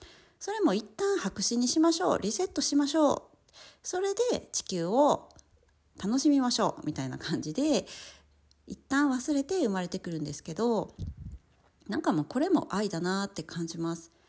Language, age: Japanese, 40-59